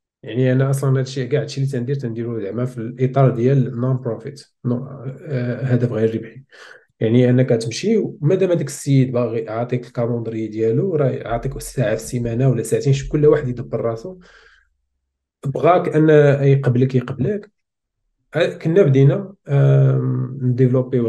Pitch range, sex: 115-140 Hz, male